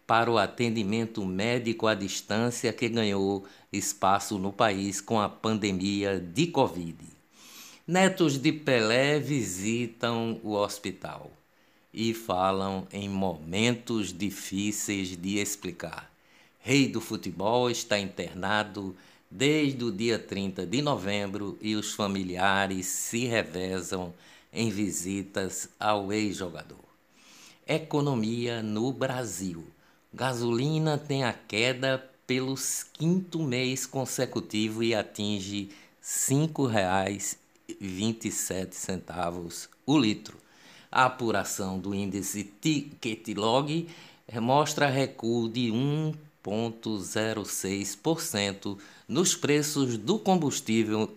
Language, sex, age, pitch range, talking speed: Portuguese, male, 60-79, 100-130 Hz, 95 wpm